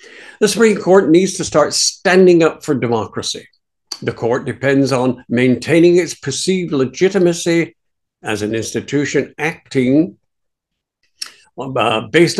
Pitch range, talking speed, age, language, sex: 125-180 Hz, 110 wpm, 60-79, English, male